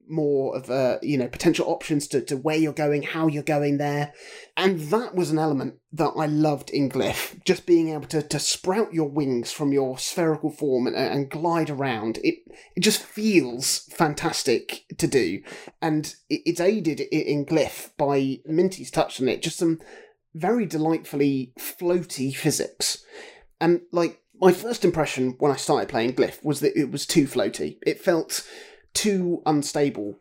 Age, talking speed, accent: 30-49, 170 wpm, British